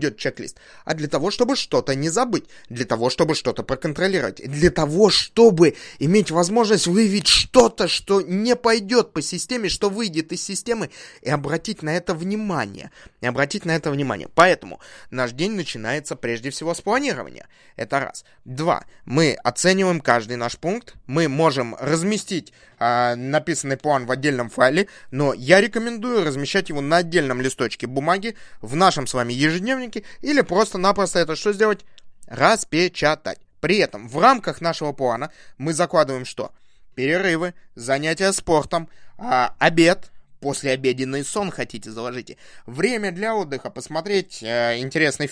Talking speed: 145 wpm